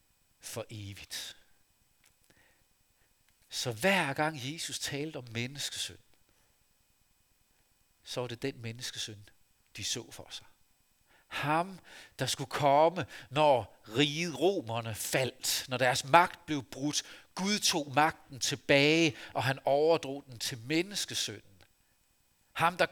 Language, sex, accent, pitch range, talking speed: Danish, male, native, 110-155 Hz, 115 wpm